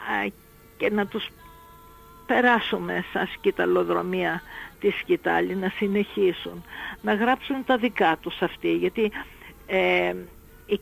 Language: Greek